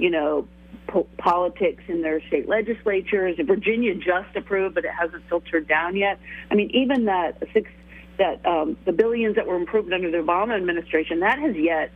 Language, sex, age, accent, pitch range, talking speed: English, female, 50-69, American, 160-205 Hz, 180 wpm